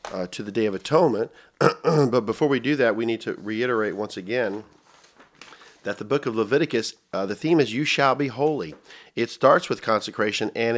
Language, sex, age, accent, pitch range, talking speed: English, male, 50-69, American, 105-145 Hz, 195 wpm